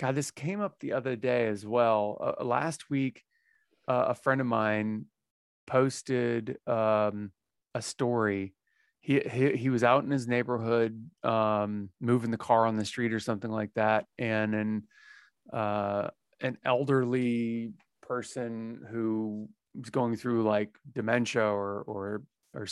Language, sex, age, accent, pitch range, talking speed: English, male, 30-49, American, 105-125 Hz, 145 wpm